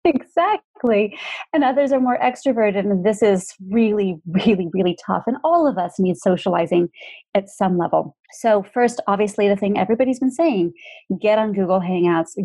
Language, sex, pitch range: English, female, 180-225 Hz